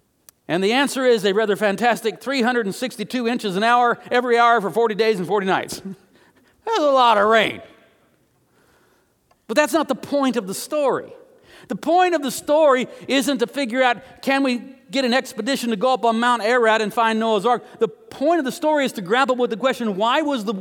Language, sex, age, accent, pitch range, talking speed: English, male, 50-69, American, 170-255 Hz, 205 wpm